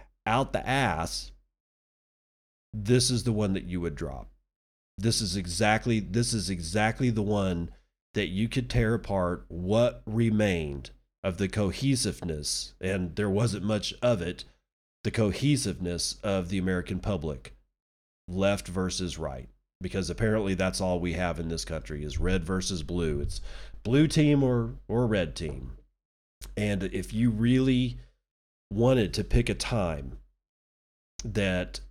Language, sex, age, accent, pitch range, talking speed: English, male, 40-59, American, 85-110 Hz, 140 wpm